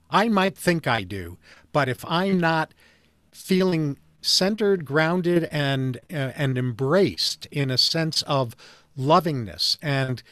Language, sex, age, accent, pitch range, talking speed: English, male, 50-69, American, 120-160 Hz, 130 wpm